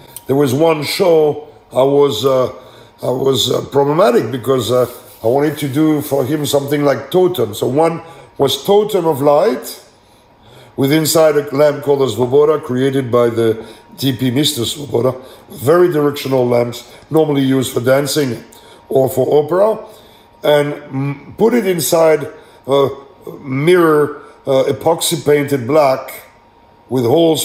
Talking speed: 140 wpm